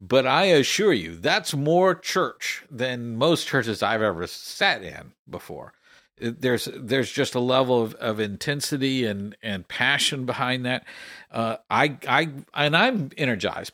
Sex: male